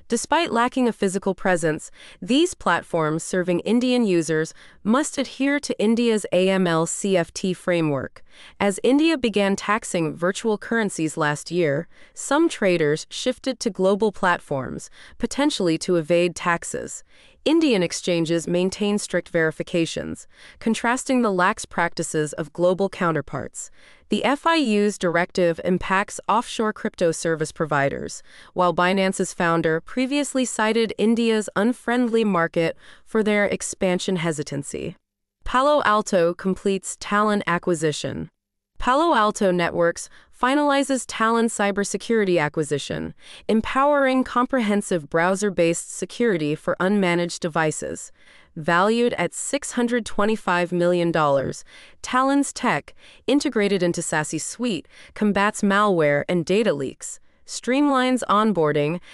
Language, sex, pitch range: English, female, 170-230 Hz